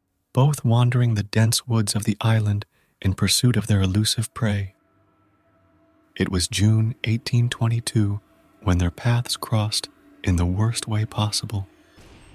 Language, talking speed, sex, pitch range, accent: English, 130 wpm, male, 90-115 Hz, American